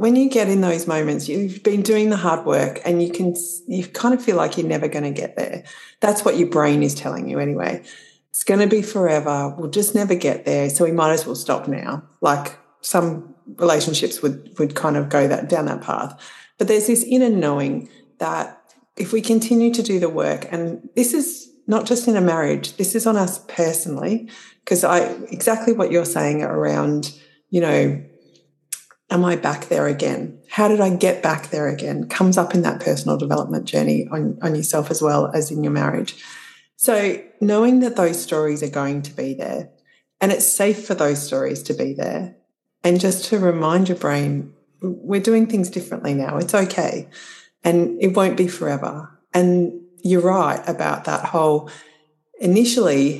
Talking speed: 190 wpm